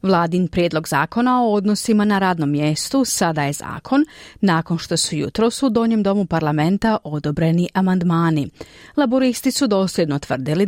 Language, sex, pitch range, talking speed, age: Croatian, female, 165-225 Hz, 140 wpm, 40-59